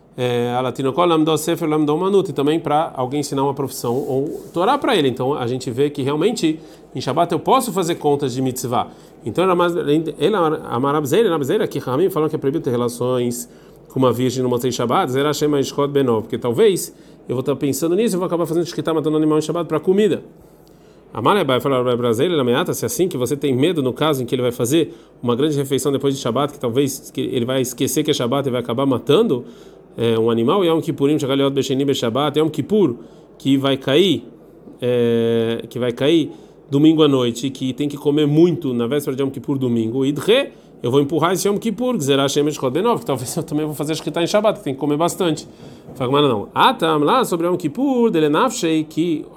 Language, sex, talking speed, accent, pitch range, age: Portuguese, male, 220 wpm, Brazilian, 130-160 Hz, 40-59